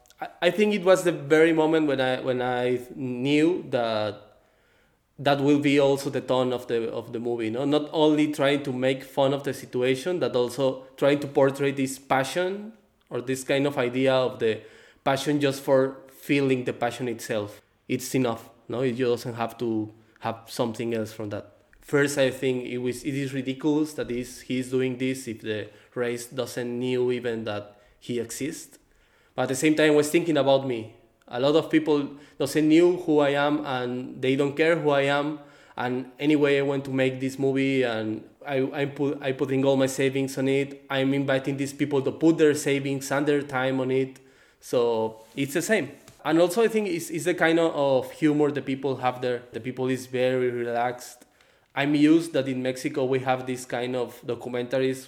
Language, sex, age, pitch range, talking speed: English, male, 20-39, 125-145 Hz, 200 wpm